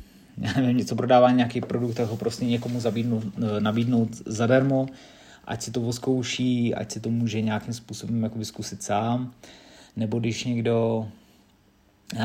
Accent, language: native, Czech